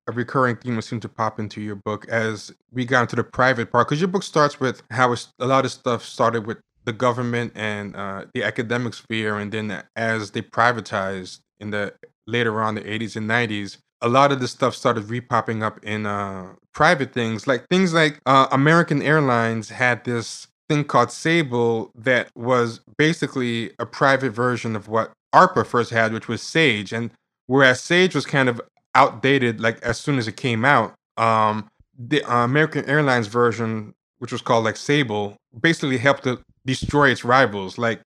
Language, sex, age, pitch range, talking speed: English, male, 20-39, 110-135 Hz, 185 wpm